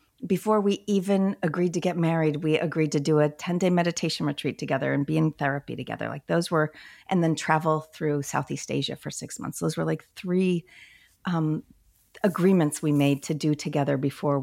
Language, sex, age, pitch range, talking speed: English, female, 40-59, 140-175 Hz, 190 wpm